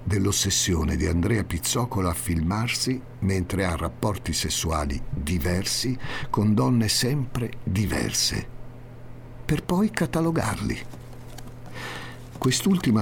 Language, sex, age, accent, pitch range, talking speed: Italian, male, 50-69, native, 90-125 Hz, 90 wpm